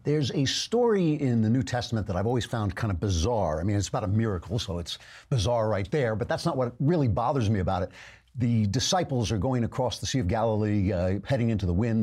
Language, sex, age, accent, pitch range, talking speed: English, male, 60-79, American, 105-135 Hz, 240 wpm